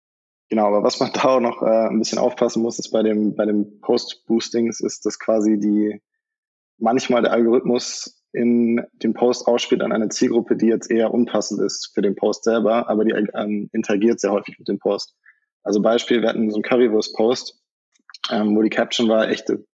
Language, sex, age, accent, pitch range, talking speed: German, male, 20-39, German, 110-120 Hz, 190 wpm